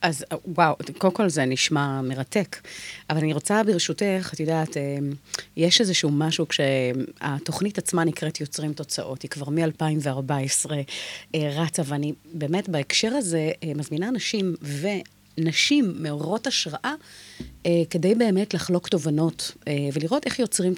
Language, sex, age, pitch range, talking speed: Hebrew, female, 30-49, 150-185 Hz, 120 wpm